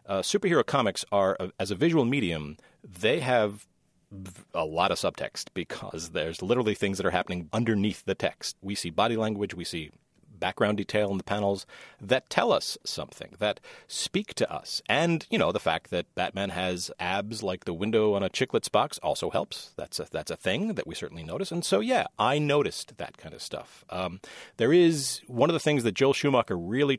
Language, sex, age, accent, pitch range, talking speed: English, male, 40-59, American, 95-140 Hz, 200 wpm